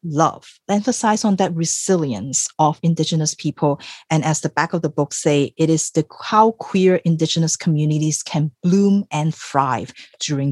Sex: female